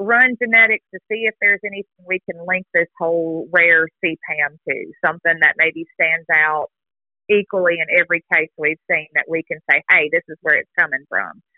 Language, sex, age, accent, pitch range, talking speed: English, female, 30-49, American, 160-210 Hz, 190 wpm